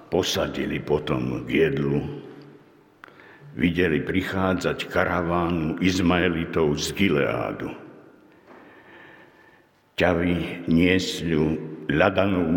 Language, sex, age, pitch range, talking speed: Slovak, male, 60-79, 80-105 Hz, 60 wpm